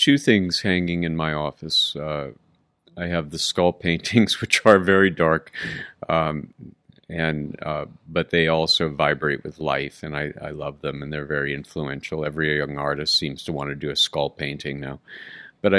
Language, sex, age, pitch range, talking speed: English, male, 50-69, 80-100 Hz, 180 wpm